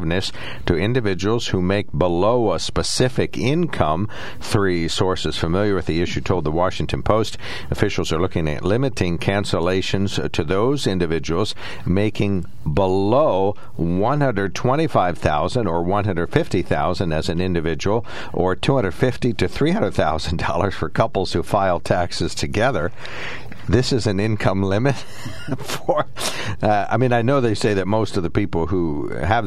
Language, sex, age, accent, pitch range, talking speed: English, male, 60-79, American, 85-105 Hz, 160 wpm